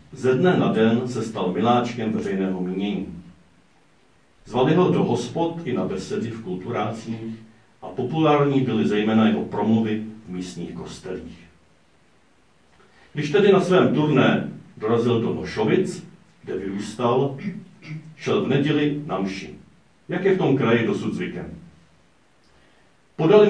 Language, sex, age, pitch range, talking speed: Czech, male, 50-69, 110-140 Hz, 130 wpm